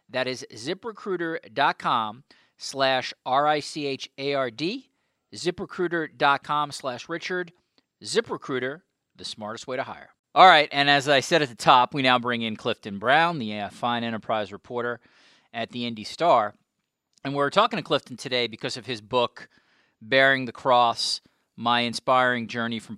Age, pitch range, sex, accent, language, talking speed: 40-59, 110-145 Hz, male, American, English, 140 wpm